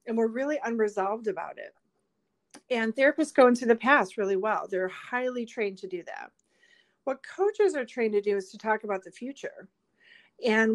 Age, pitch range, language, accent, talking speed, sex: 40-59, 195-275 Hz, English, American, 185 wpm, female